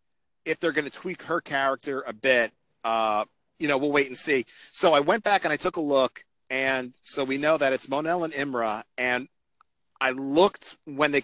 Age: 40-59